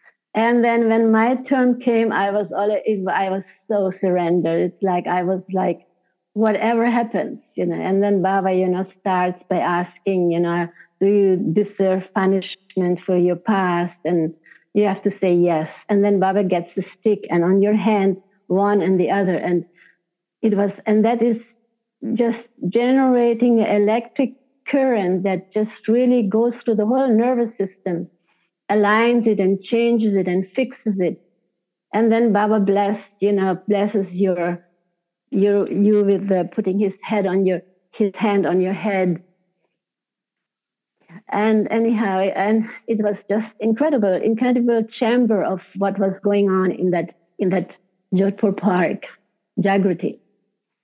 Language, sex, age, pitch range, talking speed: English, female, 60-79, 185-220 Hz, 150 wpm